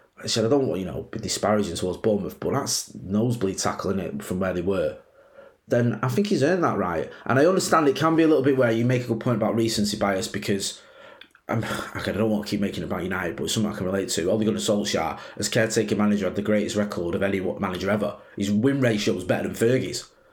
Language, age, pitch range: English, 20-39, 100-120 Hz